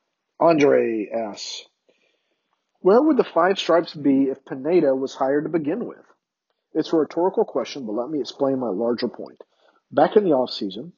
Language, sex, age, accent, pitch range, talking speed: English, male, 40-59, American, 125-165 Hz, 165 wpm